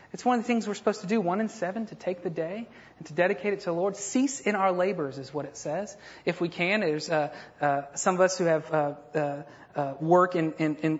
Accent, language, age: American, English, 30-49